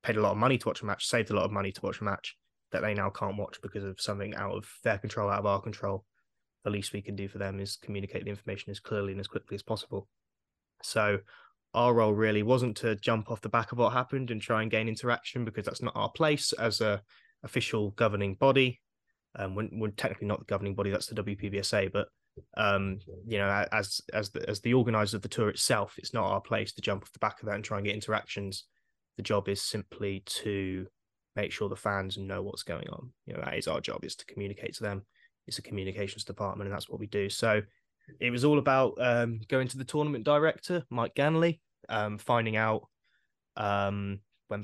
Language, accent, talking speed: English, British, 230 wpm